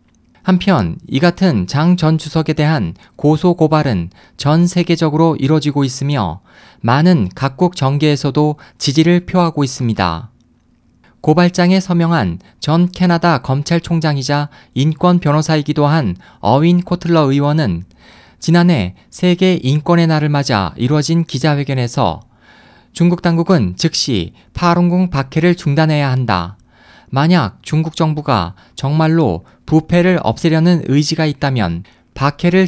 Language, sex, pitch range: Korean, male, 125-170 Hz